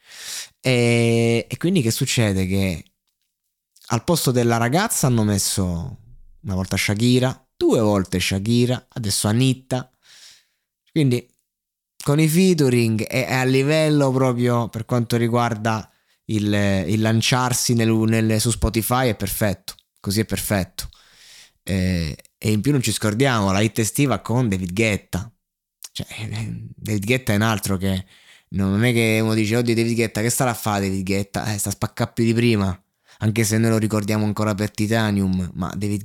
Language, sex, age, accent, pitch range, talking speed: Italian, male, 20-39, native, 100-120 Hz, 155 wpm